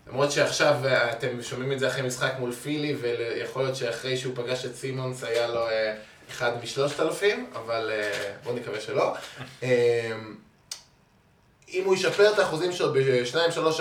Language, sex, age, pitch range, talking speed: Hebrew, male, 20-39, 120-150 Hz, 150 wpm